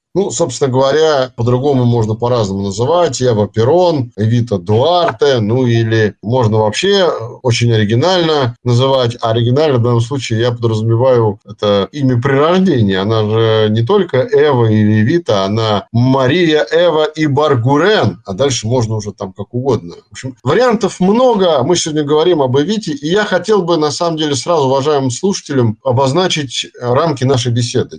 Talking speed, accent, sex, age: 150 wpm, native, male, 50-69